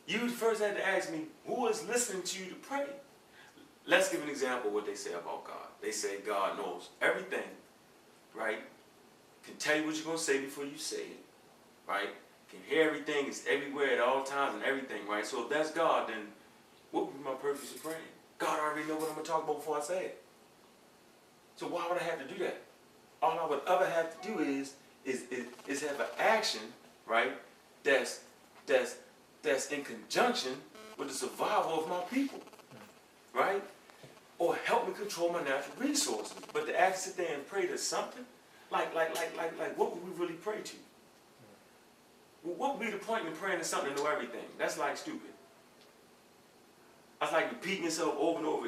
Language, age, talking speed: English, 30-49, 200 wpm